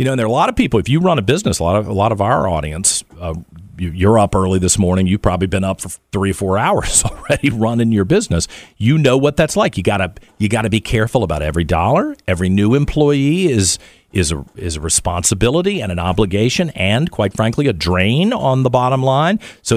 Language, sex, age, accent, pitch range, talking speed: English, male, 50-69, American, 85-120 Hz, 235 wpm